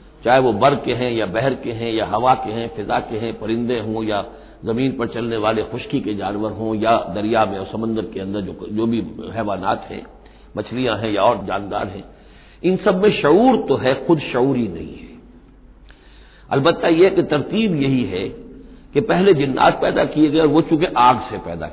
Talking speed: 200 wpm